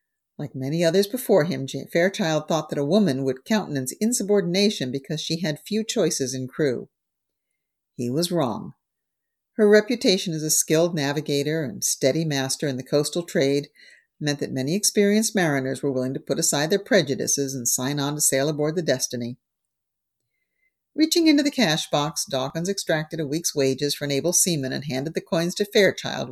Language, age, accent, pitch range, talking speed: English, 50-69, American, 135-190 Hz, 175 wpm